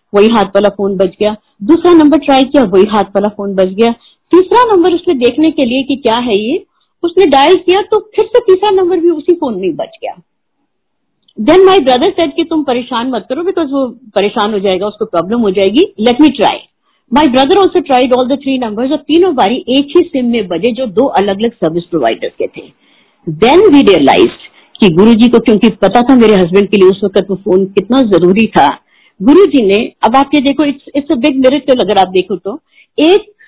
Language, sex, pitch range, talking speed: Hindi, female, 215-310 Hz, 205 wpm